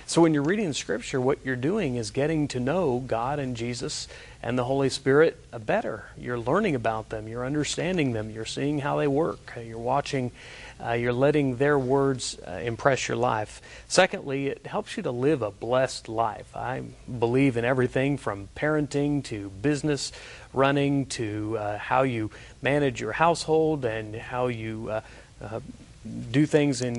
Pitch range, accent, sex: 115-145 Hz, American, male